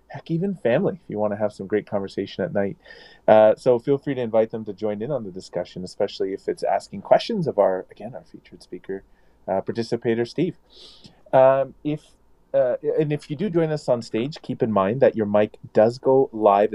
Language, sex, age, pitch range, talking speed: English, male, 30-49, 105-150 Hz, 215 wpm